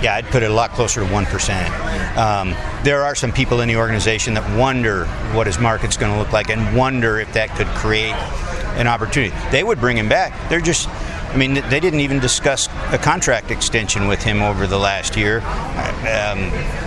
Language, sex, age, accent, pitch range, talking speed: English, male, 50-69, American, 105-130 Hz, 200 wpm